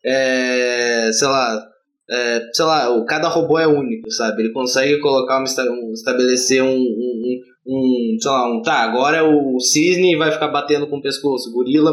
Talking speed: 180 wpm